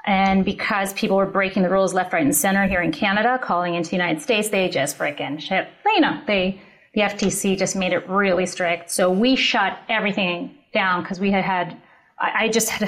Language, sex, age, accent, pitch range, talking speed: English, female, 30-49, American, 185-235 Hz, 205 wpm